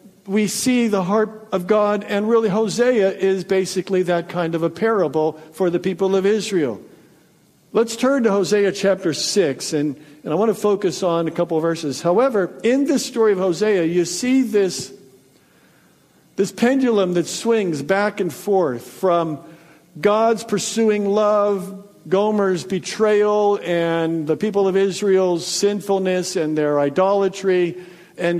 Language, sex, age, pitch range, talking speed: English, male, 50-69, 165-205 Hz, 145 wpm